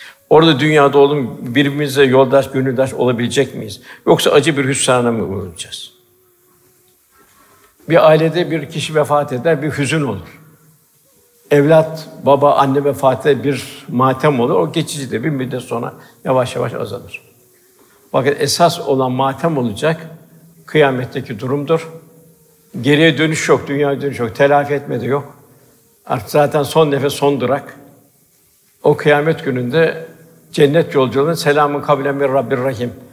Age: 60-79